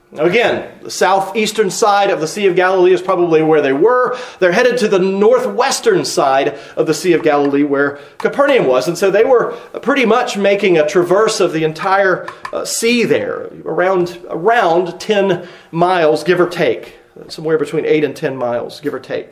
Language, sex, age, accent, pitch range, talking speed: English, male, 40-59, American, 170-225 Hz, 185 wpm